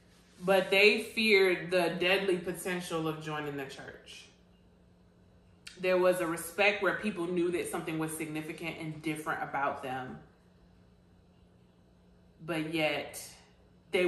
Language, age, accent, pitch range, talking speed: English, 20-39, American, 145-180 Hz, 120 wpm